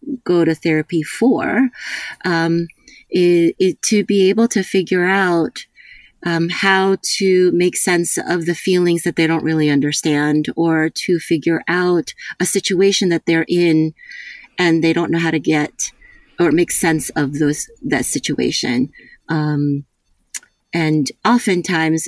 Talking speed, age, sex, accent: 140 wpm, 30-49, female, American